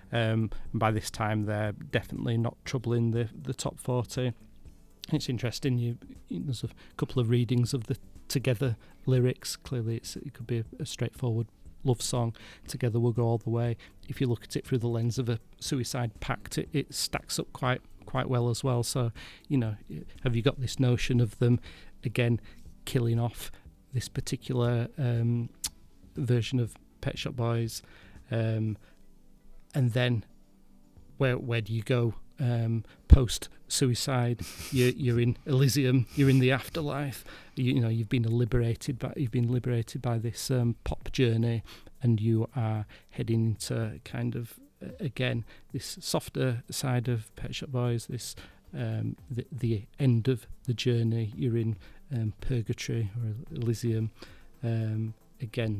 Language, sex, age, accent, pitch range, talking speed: English, male, 40-59, British, 110-130 Hz, 160 wpm